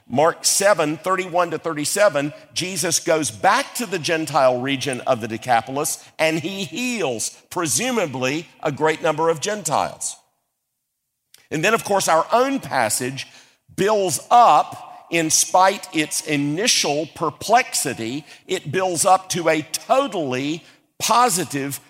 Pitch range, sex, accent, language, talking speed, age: 140-195 Hz, male, American, English, 125 wpm, 50-69